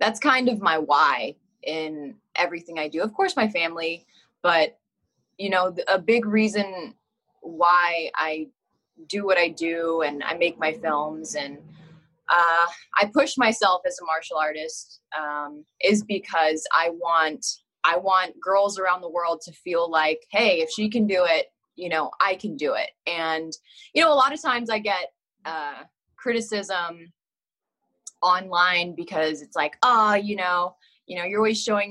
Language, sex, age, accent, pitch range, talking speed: English, female, 20-39, American, 165-210 Hz, 165 wpm